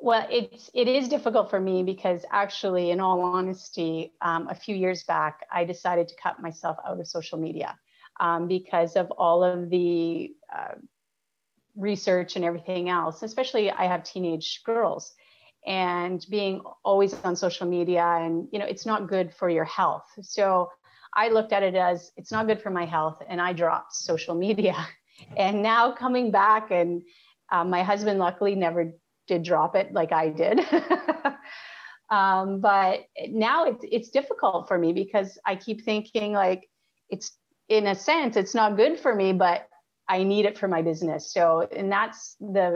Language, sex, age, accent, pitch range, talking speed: English, female, 30-49, American, 175-210 Hz, 175 wpm